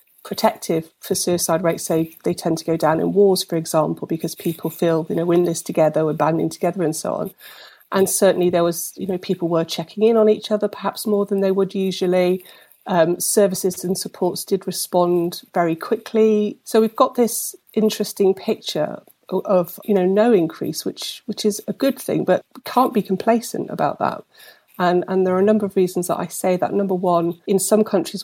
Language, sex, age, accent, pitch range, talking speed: English, female, 40-59, British, 170-205 Hz, 200 wpm